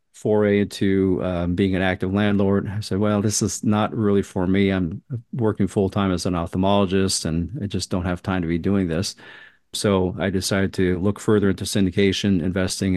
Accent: American